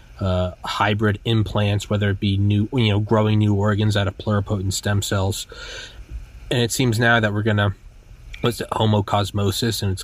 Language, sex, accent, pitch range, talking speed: English, male, American, 100-120 Hz, 175 wpm